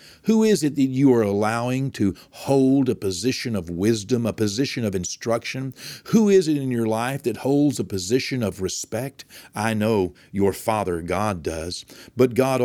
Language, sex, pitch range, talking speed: English, male, 100-130 Hz, 175 wpm